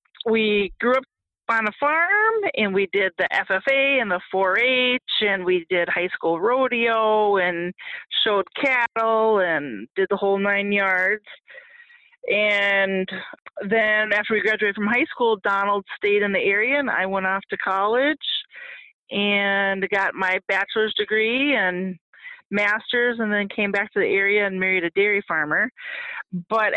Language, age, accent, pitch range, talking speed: English, 30-49, American, 190-220 Hz, 150 wpm